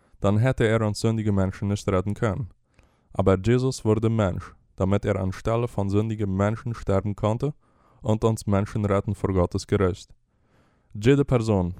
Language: Spanish